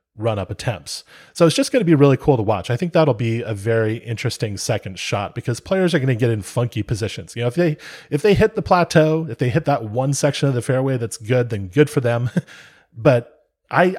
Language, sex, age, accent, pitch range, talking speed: English, male, 30-49, American, 110-145 Hz, 240 wpm